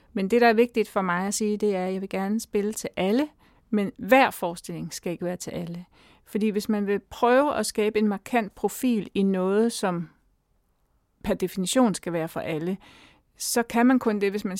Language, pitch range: Danish, 180-220 Hz